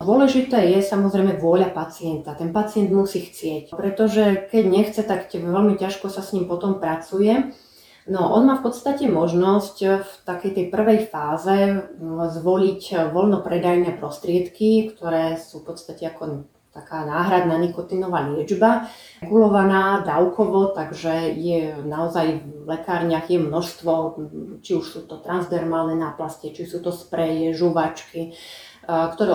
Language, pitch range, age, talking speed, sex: Slovak, 165-195 Hz, 30-49, 130 wpm, female